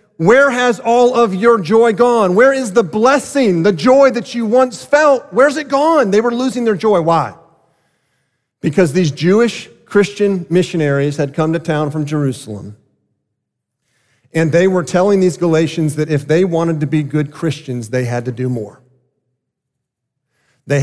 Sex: male